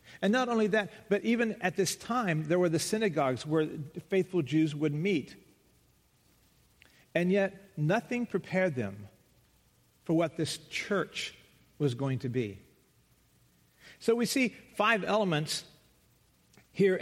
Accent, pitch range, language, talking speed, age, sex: American, 150-190 Hz, English, 130 wpm, 50-69, male